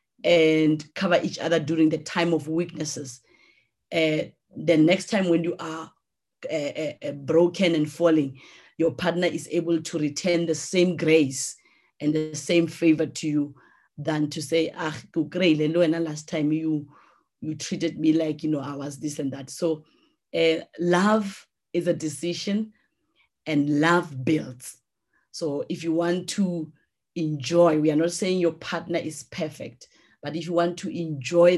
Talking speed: 160 wpm